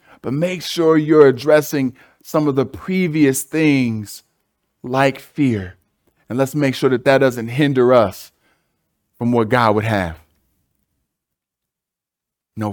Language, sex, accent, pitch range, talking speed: English, male, American, 110-145 Hz, 125 wpm